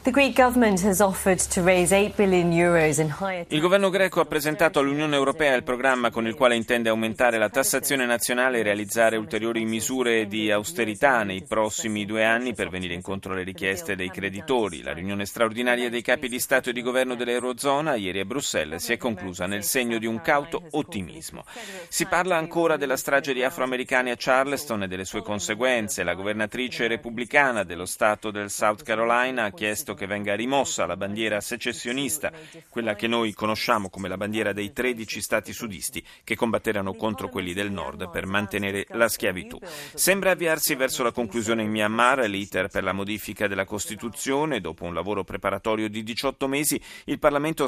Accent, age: native, 30-49